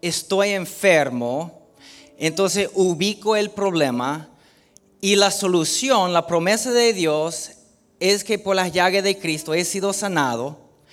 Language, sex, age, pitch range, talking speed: Spanish, male, 30-49, 170-220 Hz, 125 wpm